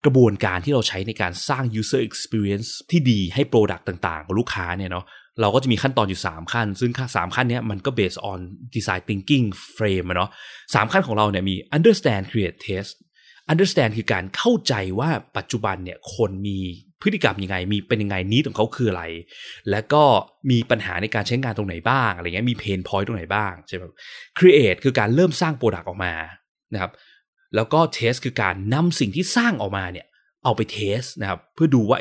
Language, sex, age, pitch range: Thai, male, 20-39, 100-135 Hz